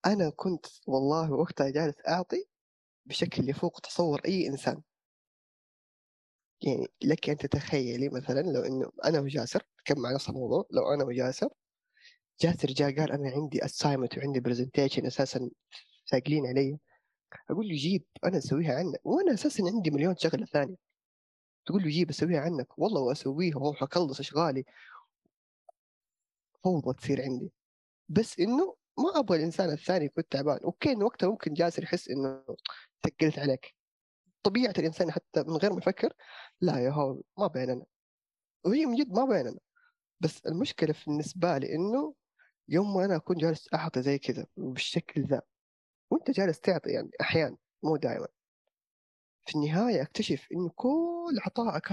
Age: 20-39